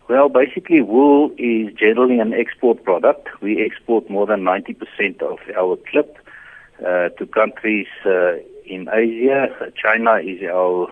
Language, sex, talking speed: English, male, 135 wpm